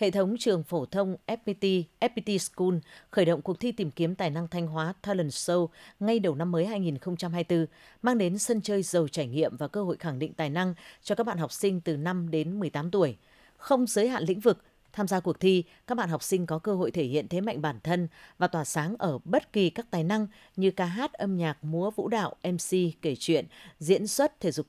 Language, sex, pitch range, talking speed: Vietnamese, female, 160-205 Hz, 230 wpm